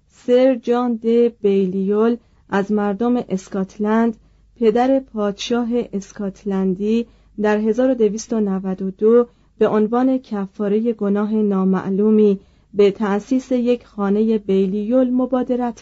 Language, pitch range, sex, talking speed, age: Persian, 200-240 Hz, female, 85 wpm, 40-59